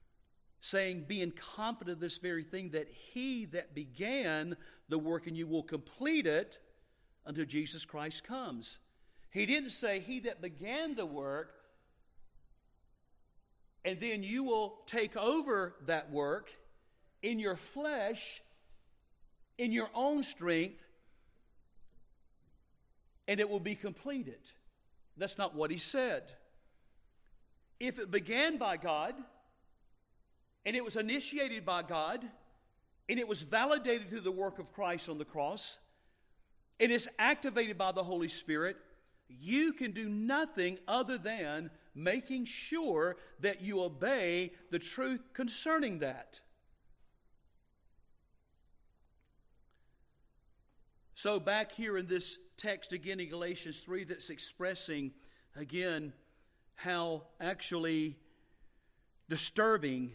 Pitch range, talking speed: 160-235 Hz, 115 wpm